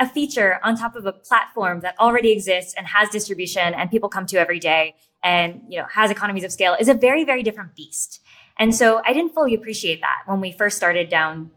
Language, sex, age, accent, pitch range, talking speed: English, female, 20-39, American, 190-245 Hz, 230 wpm